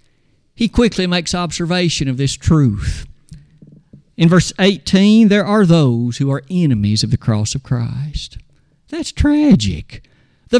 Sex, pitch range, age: male, 125-180 Hz, 50-69